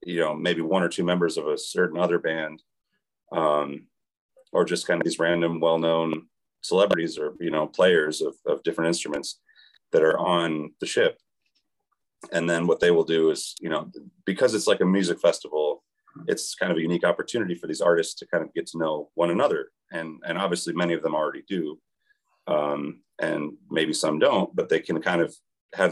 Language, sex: English, male